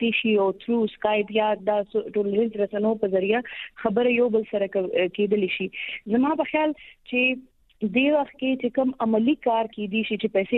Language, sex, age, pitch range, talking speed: Urdu, female, 20-39, 210-255 Hz, 70 wpm